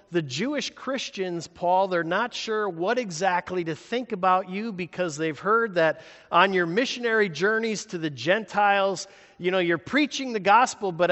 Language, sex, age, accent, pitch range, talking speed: English, male, 50-69, American, 145-215 Hz, 165 wpm